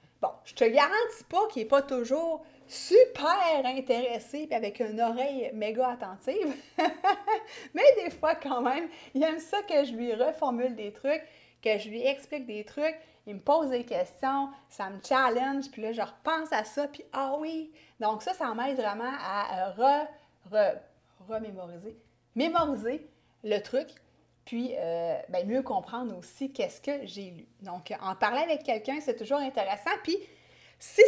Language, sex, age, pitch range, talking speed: French, female, 30-49, 220-305 Hz, 170 wpm